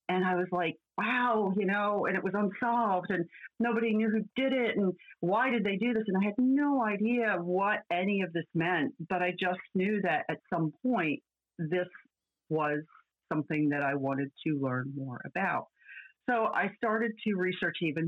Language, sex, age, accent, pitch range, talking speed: English, female, 40-59, American, 160-215 Hz, 190 wpm